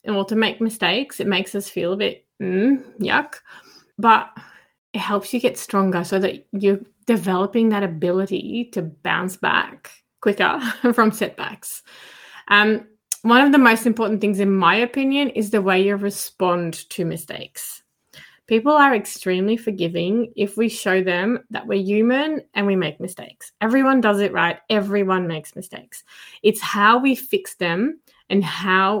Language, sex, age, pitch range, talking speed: English, female, 20-39, 195-255 Hz, 155 wpm